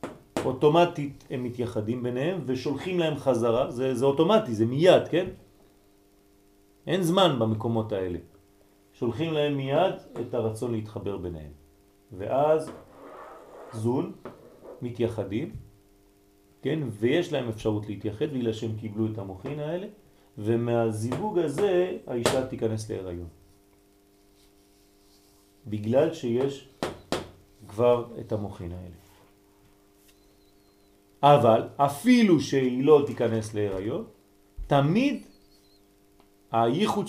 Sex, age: male, 40-59